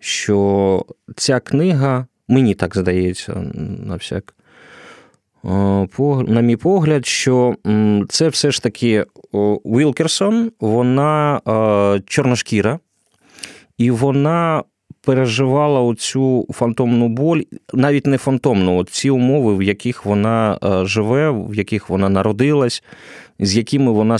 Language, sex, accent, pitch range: Ukrainian, male, native, 105-140 Hz